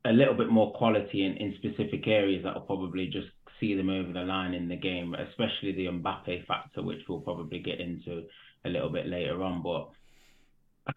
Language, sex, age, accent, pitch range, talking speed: English, male, 20-39, British, 100-135 Hz, 200 wpm